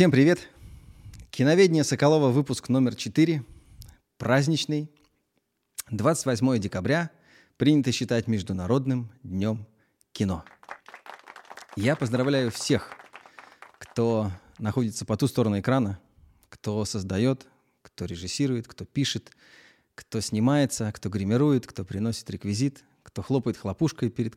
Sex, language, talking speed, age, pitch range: male, Russian, 100 wpm, 30-49, 110-140 Hz